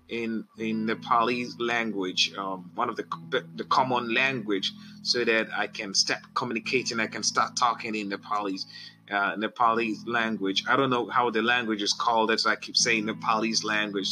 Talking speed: 175 wpm